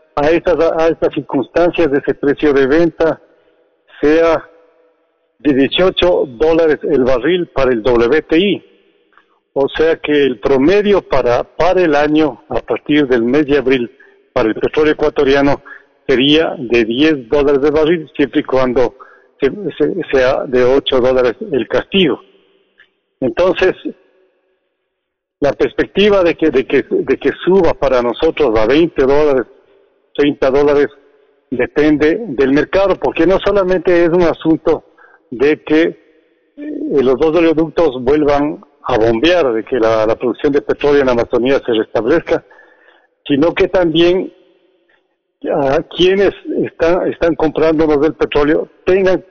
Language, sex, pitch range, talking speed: Spanish, male, 145-205 Hz, 135 wpm